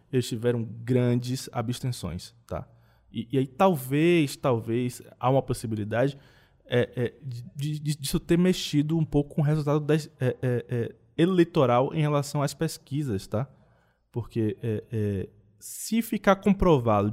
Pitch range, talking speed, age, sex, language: 115-155 Hz, 150 wpm, 20-39, male, Portuguese